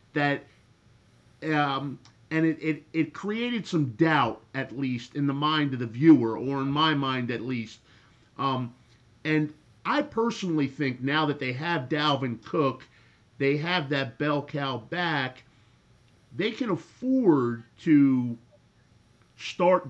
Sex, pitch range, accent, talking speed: male, 130-165 Hz, American, 135 wpm